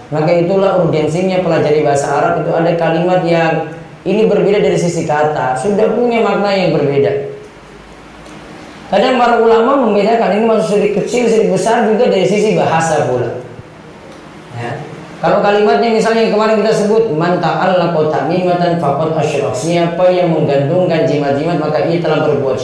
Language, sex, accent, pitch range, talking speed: Indonesian, female, native, 145-200 Hz, 155 wpm